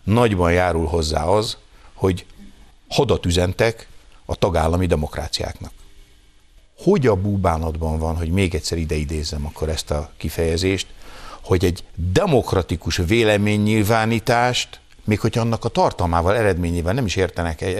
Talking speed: 120 wpm